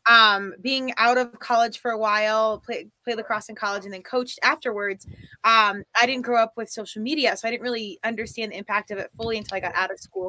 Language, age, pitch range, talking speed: English, 20-39, 195-235 Hz, 240 wpm